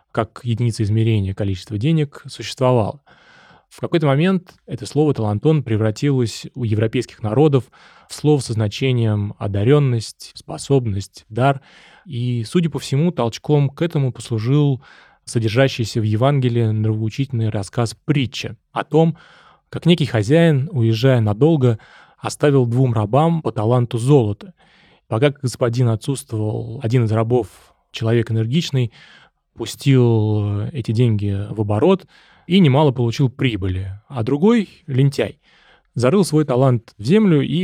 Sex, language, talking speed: male, Russian, 125 wpm